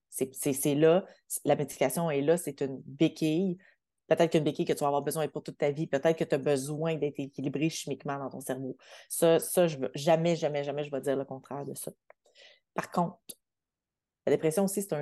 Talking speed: 220 wpm